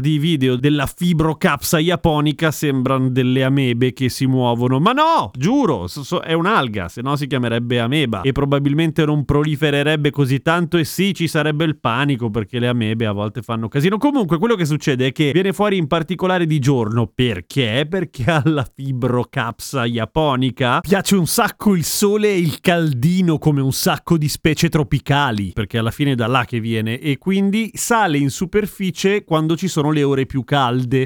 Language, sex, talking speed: Italian, male, 175 wpm